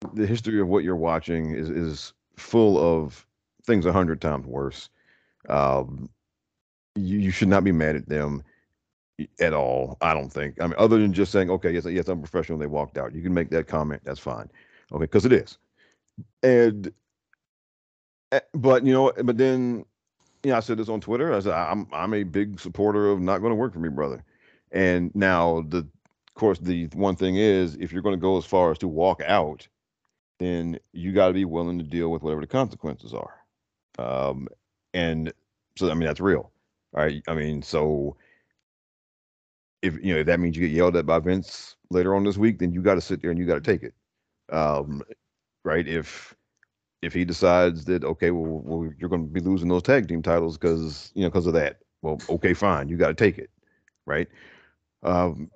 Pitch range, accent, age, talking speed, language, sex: 80-100 Hz, American, 40-59, 200 wpm, English, male